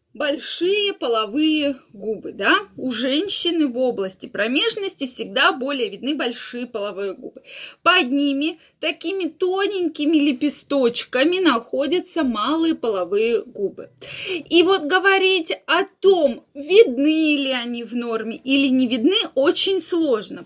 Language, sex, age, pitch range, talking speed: Russian, female, 20-39, 245-330 Hz, 115 wpm